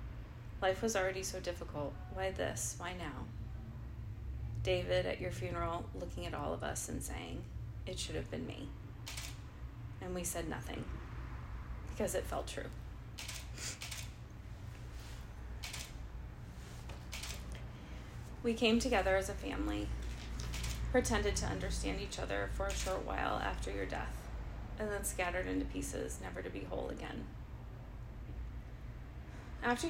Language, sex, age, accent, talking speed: English, female, 30-49, American, 125 wpm